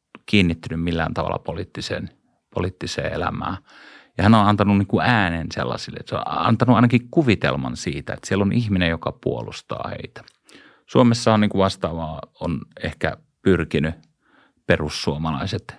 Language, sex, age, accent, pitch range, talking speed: Finnish, male, 30-49, native, 90-115 Hz, 135 wpm